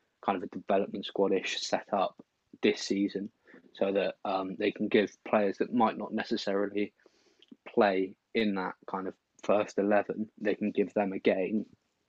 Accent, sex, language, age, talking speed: British, male, English, 20-39, 165 wpm